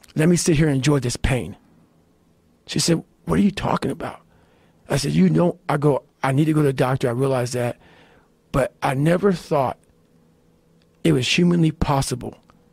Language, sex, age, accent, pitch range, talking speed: English, male, 50-69, American, 135-175 Hz, 185 wpm